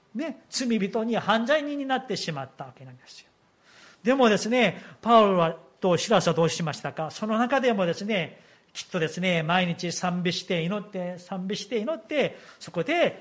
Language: Japanese